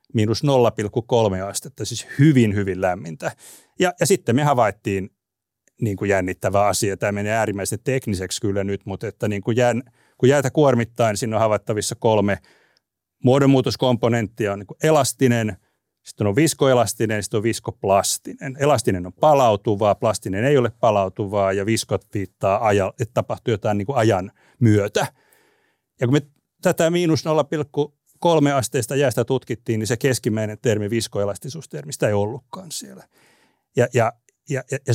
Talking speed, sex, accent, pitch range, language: 145 wpm, male, native, 105-140 Hz, Finnish